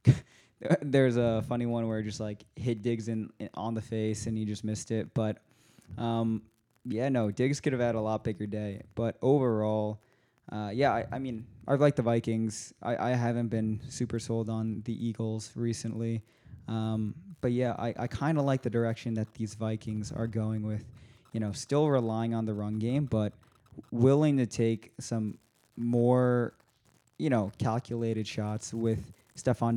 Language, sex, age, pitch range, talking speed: English, male, 20-39, 110-125 Hz, 175 wpm